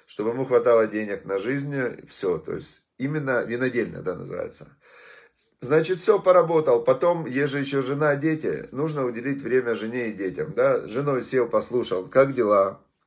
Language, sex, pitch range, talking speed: Russian, male, 110-160 Hz, 155 wpm